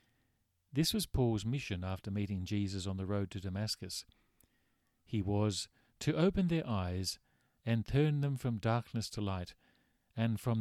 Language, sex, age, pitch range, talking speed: English, male, 50-69, 95-125 Hz, 155 wpm